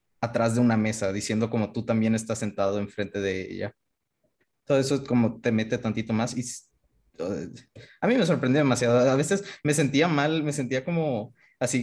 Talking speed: 190 wpm